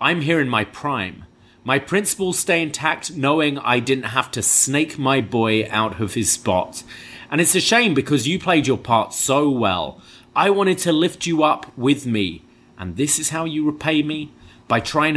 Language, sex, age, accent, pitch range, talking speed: English, male, 30-49, British, 110-160 Hz, 195 wpm